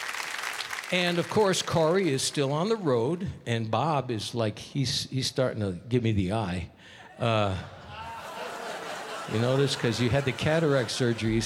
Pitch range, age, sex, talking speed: 115-155 Hz, 60-79, male, 170 wpm